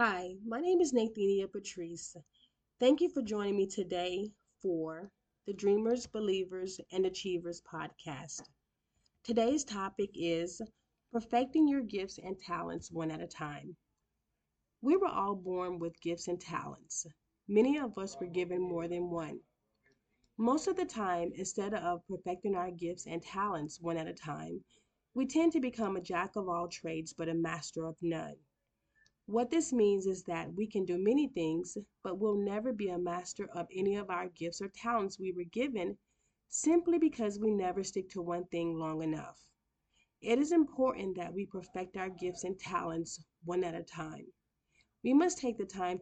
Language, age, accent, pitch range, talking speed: English, 30-49, American, 175-225 Hz, 170 wpm